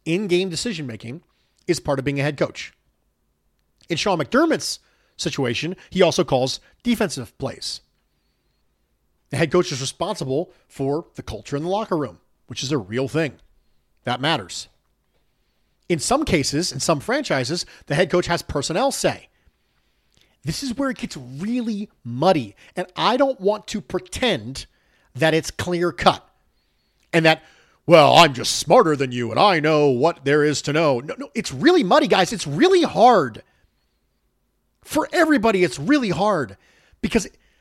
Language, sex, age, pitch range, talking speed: English, male, 40-59, 135-200 Hz, 155 wpm